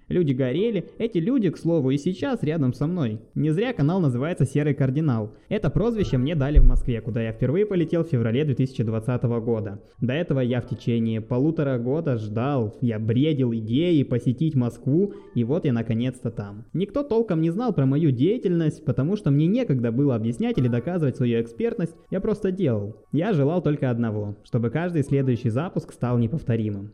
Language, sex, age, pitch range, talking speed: Russian, male, 20-39, 115-160 Hz, 175 wpm